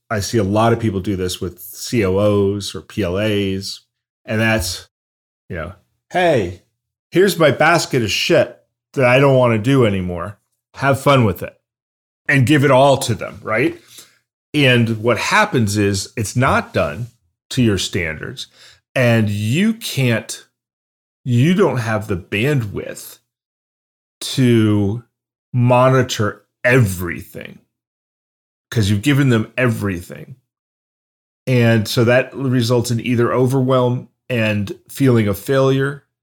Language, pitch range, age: English, 105-130 Hz, 30-49